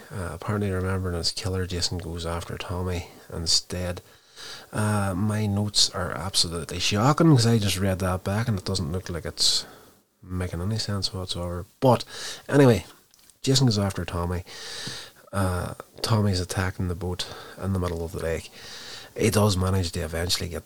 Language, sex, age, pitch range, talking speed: English, male, 30-49, 85-95 Hz, 160 wpm